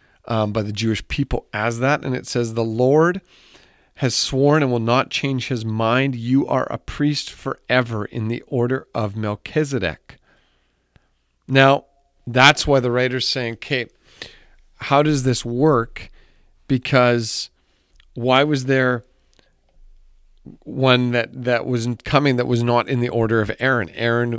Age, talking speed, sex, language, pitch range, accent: 40-59, 145 wpm, male, English, 110-135 Hz, American